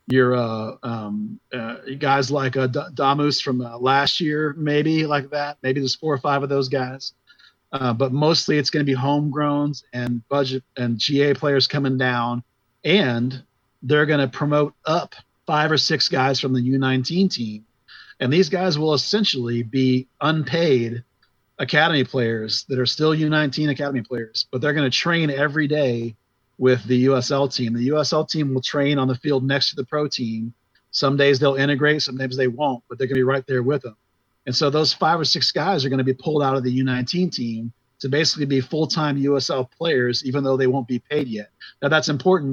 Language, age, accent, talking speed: English, 40-59, American, 195 wpm